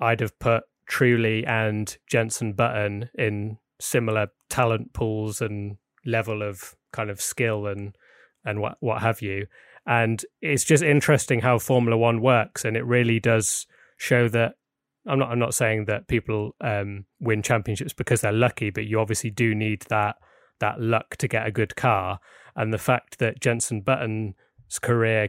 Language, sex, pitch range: English, male, 110-120 Hz